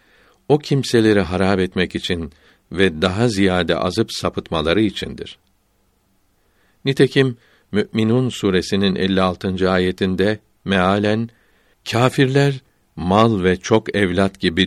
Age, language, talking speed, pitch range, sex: 60-79, Turkish, 95 wpm, 85-105 Hz, male